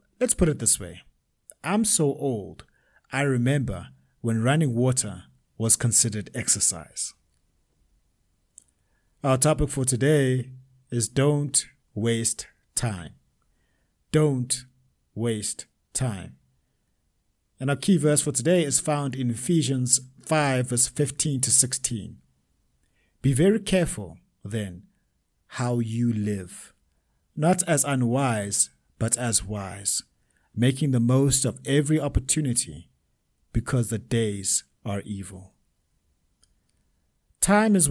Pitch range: 100-145 Hz